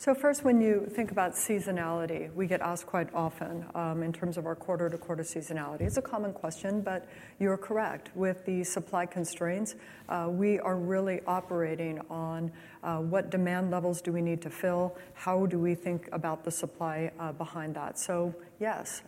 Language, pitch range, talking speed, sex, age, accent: English, 165-190 Hz, 180 wpm, female, 40-59, American